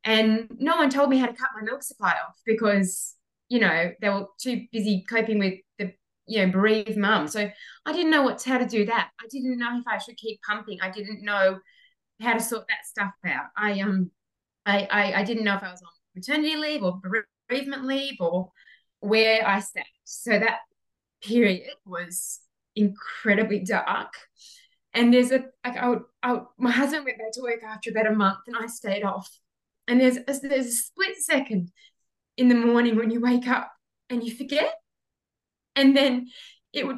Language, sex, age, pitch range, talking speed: English, female, 20-39, 205-260 Hz, 195 wpm